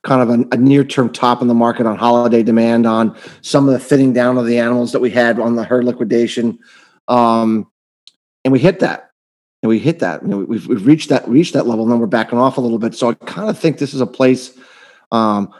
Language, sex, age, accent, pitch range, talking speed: English, male, 30-49, American, 120-145 Hz, 240 wpm